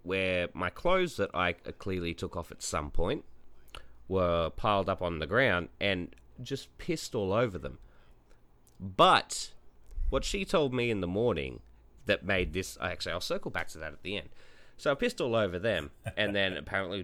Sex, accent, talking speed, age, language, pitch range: male, Australian, 185 wpm, 30-49, English, 75-120 Hz